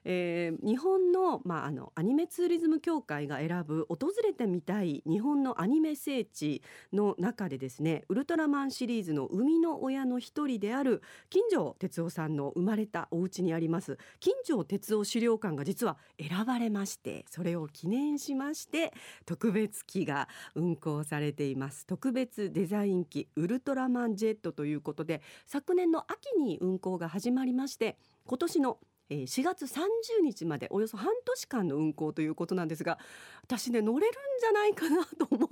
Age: 40-59